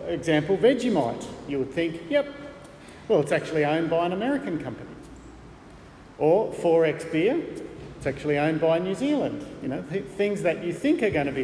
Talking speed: 180 wpm